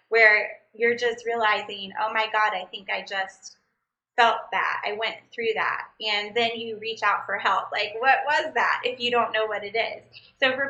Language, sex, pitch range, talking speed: English, female, 205-240 Hz, 210 wpm